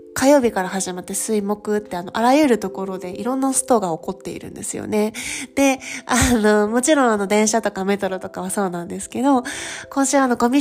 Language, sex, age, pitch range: Japanese, female, 20-39, 185-250 Hz